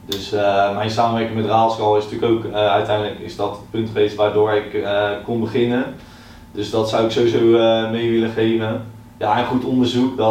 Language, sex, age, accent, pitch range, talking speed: Dutch, male, 20-39, Dutch, 110-120 Hz, 205 wpm